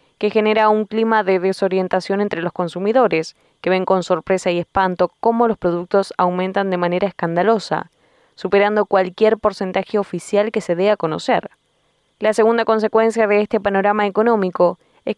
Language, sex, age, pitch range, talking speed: Spanish, female, 10-29, 185-215 Hz, 155 wpm